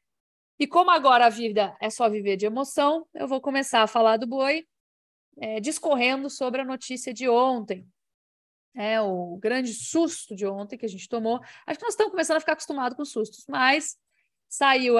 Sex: female